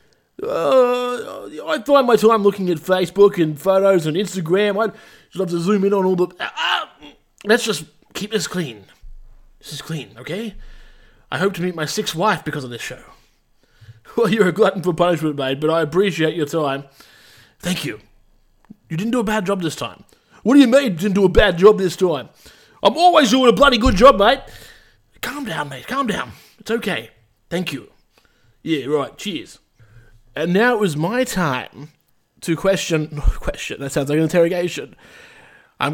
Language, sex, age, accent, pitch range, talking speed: English, male, 20-39, Australian, 155-225 Hz, 185 wpm